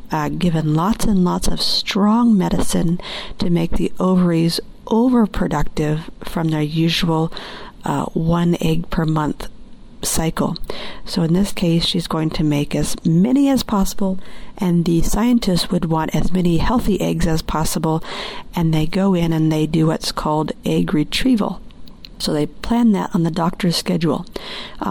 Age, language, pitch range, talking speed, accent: 40-59, English, 165-200 Hz, 155 wpm, American